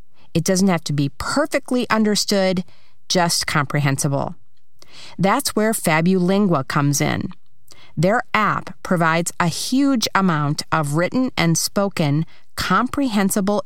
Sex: female